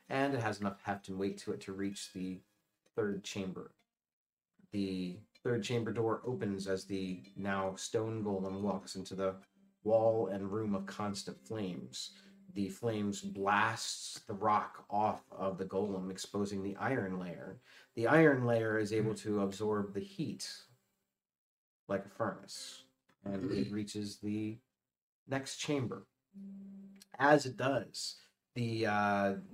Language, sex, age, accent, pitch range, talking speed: English, male, 30-49, American, 95-115 Hz, 140 wpm